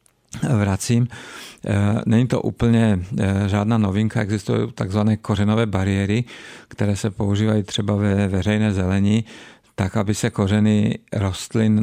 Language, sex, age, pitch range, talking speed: Czech, male, 50-69, 100-110 Hz, 110 wpm